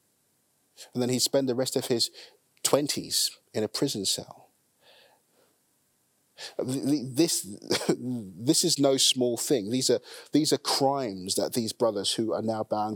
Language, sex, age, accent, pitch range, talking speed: English, male, 30-49, British, 105-130 Hz, 140 wpm